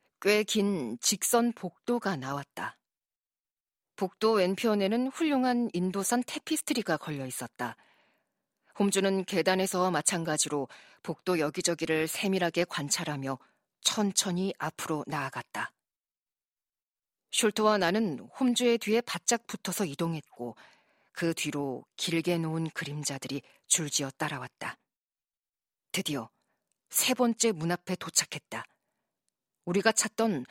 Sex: female